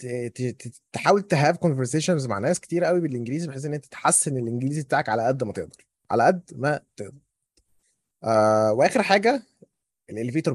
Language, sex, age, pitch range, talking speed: Arabic, male, 20-39, 130-185 Hz, 150 wpm